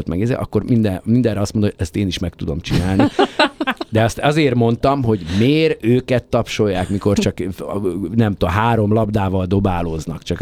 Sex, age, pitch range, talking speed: male, 50-69, 95-120 Hz, 175 wpm